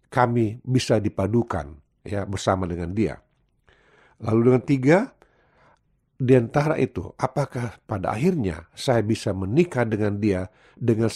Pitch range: 95-130 Hz